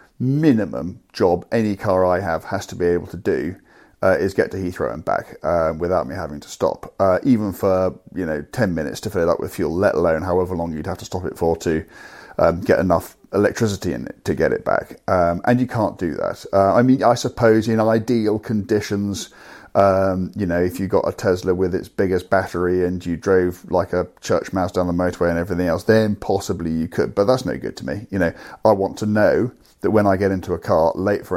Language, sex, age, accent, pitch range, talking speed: English, male, 40-59, British, 90-105 Hz, 235 wpm